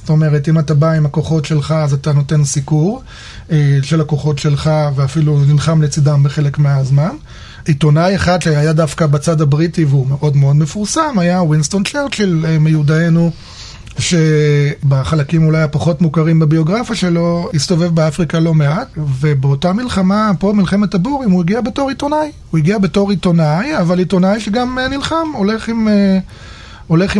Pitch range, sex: 145-180 Hz, male